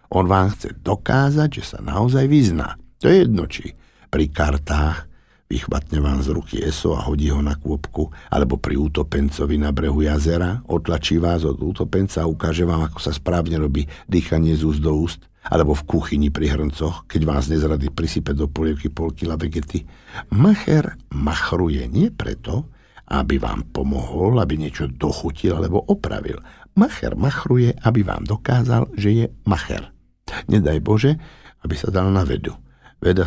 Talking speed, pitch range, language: 155 wpm, 75-120 Hz, Slovak